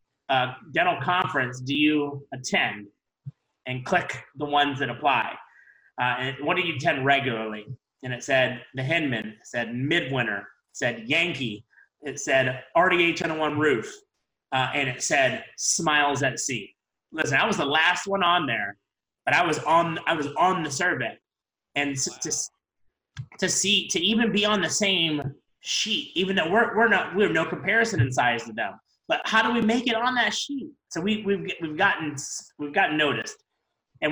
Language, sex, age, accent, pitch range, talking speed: English, male, 30-49, American, 130-175 Hz, 175 wpm